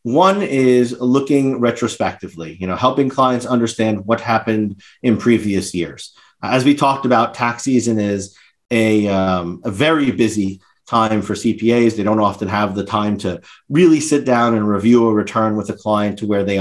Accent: American